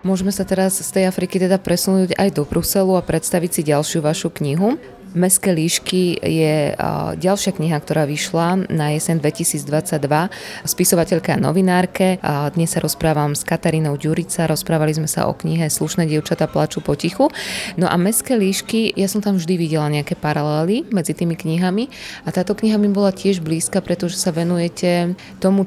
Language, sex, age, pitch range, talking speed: Slovak, female, 20-39, 155-185 Hz, 165 wpm